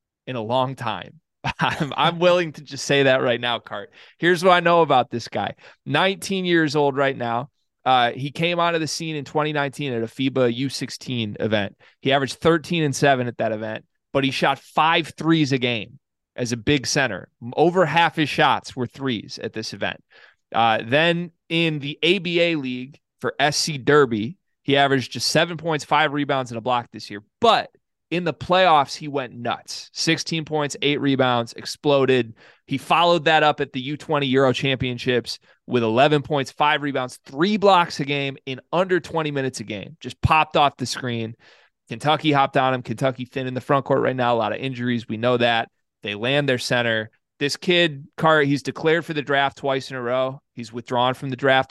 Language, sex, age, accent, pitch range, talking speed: English, male, 20-39, American, 125-155 Hz, 195 wpm